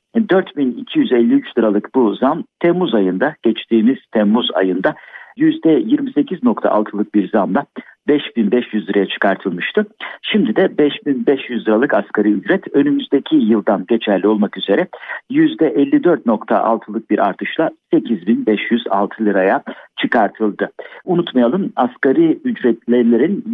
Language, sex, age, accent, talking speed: Turkish, male, 60-79, native, 90 wpm